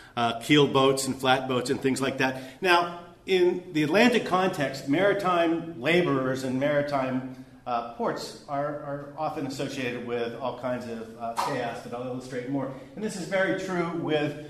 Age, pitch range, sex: 40-59, 135-180 Hz, male